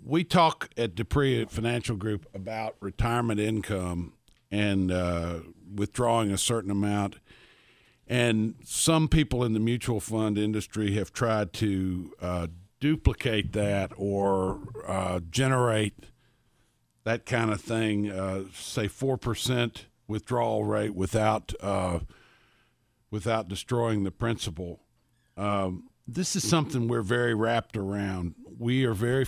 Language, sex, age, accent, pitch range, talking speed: English, male, 50-69, American, 100-120 Hz, 120 wpm